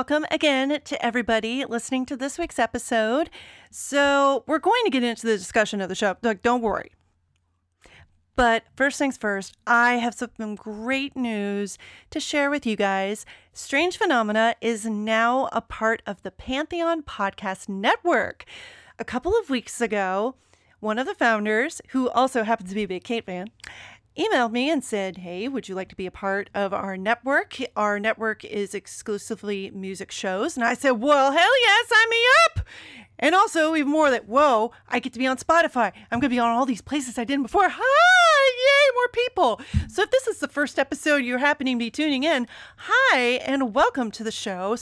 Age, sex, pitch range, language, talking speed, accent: 40-59, female, 205-285 Hz, English, 190 wpm, American